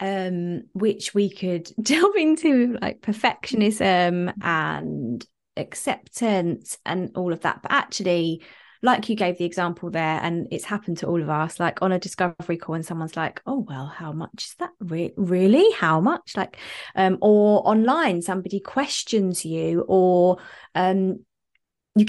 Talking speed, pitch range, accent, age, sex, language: 155 wpm, 175-225 Hz, British, 20-39, female, English